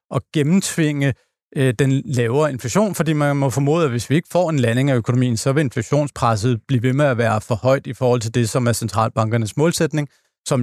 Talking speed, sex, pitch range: 215 wpm, male, 130-165 Hz